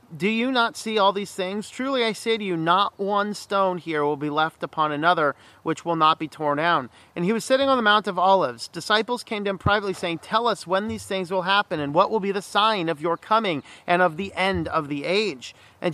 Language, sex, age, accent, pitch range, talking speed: English, male, 40-59, American, 160-225 Hz, 250 wpm